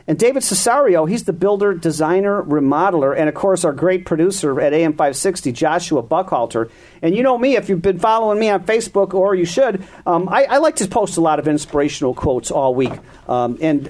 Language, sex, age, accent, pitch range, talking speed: English, male, 50-69, American, 155-205 Hz, 205 wpm